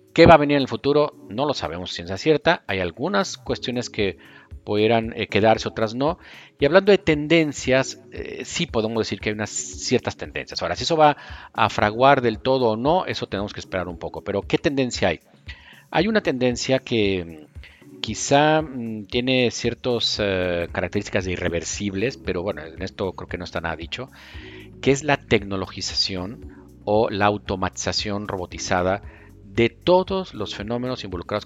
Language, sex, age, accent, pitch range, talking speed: Spanish, male, 50-69, Mexican, 90-120 Hz, 165 wpm